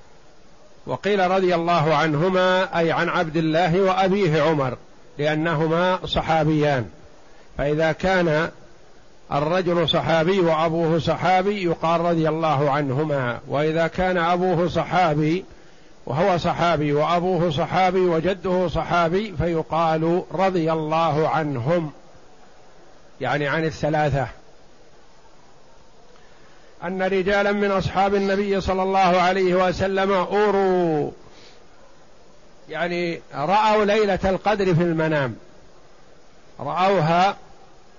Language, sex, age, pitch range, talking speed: Arabic, male, 50-69, 160-190 Hz, 90 wpm